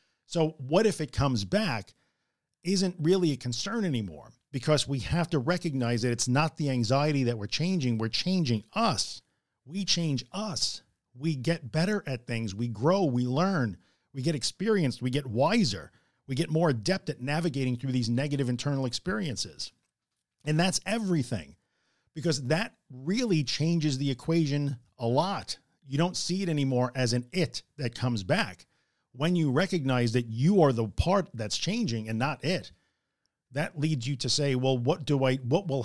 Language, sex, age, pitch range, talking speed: English, male, 50-69, 125-165 Hz, 170 wpm